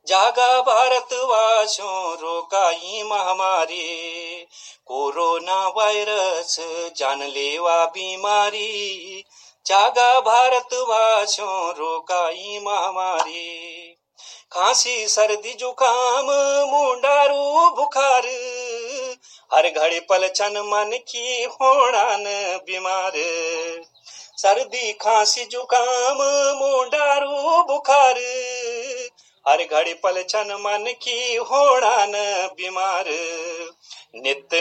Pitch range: 185-260 Hz